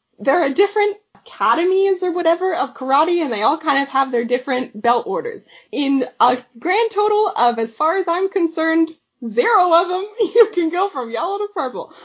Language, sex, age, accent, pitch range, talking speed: English, female, 20-39, American, 250-380 Hz, 190 wpm